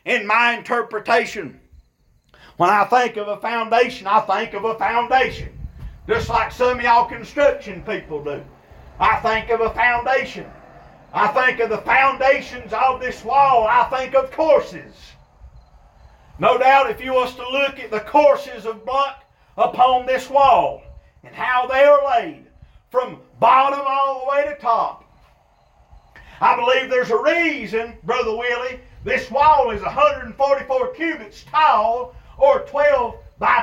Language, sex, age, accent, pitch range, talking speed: English, male, 50-69, American, 230-275 Hz, 145 wpm